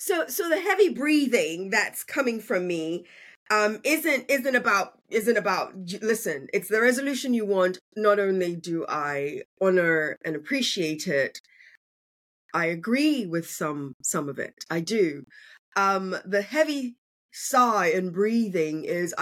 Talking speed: 140 wpm